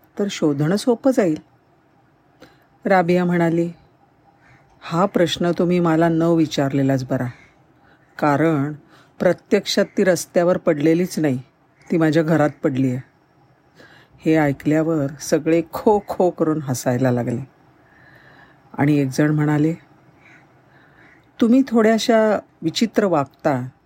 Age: 50-69